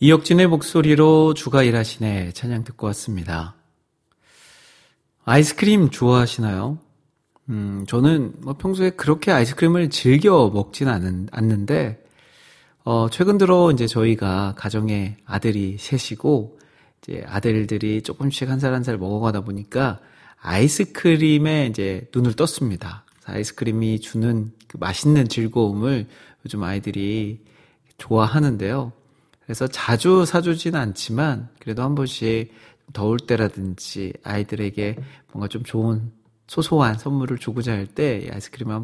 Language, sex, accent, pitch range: Korean, male, native, 105-145 Hz